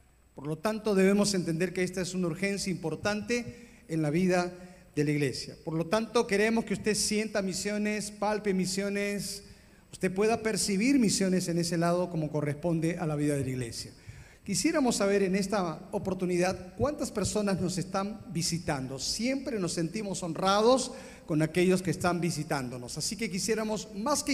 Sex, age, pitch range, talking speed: male, 40-59, 170-215 Hz, 165 wpm